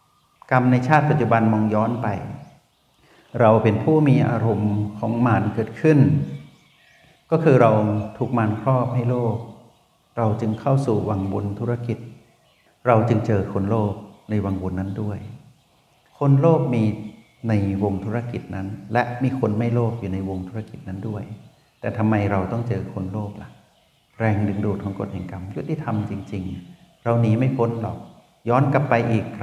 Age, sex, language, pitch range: 60-79, male, Thai, 105-130 Hz